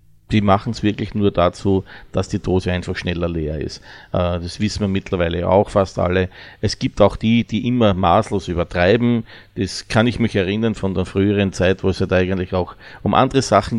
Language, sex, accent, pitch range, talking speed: German, male, Austrian, 90-110 Hz, 195 wpm